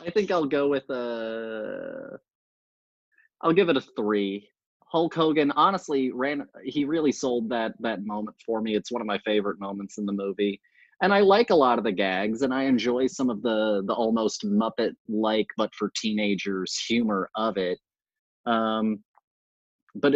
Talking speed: 170 wpm